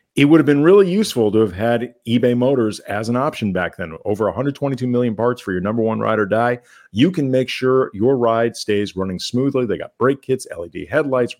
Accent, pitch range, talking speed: American, 100-125 Hz, 220 wpm